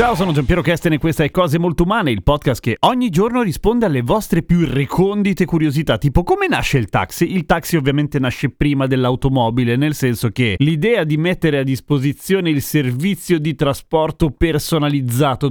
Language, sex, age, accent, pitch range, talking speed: Italian, male, 30-49, native, 130-175 Hz, 175 wpm